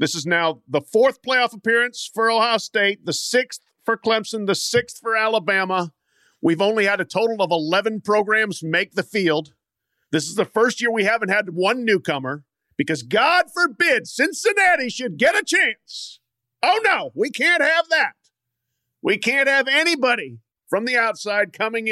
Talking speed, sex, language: 165 wpm, male, English